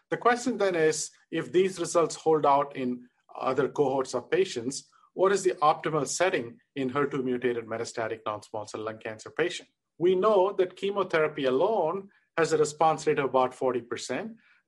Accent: Indian